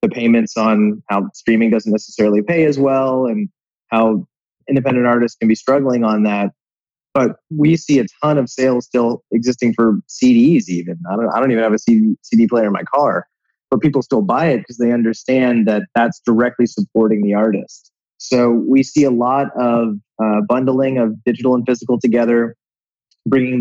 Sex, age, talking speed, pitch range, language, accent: male, 20-39, 180 wpm, 110-130 Hz, English, American